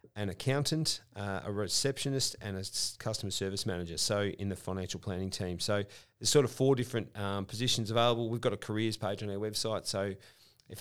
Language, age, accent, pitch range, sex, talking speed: English, 40-59, Australian, 105-130 Hz, male, 195 wpm